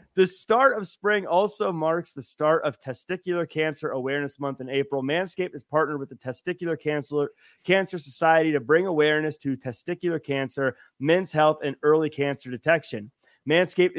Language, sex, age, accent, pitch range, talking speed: English, male, 30-49, American, 140-180 Hz, 155 wpm